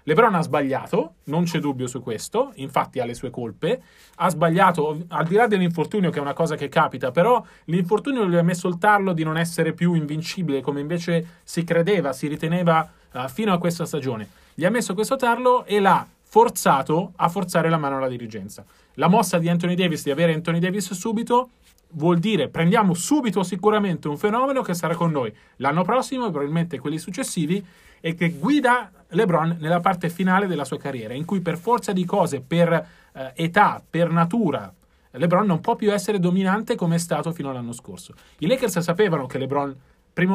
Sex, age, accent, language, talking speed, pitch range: male, 30-49, native, Italian, 190 wpm, 155-200 Hz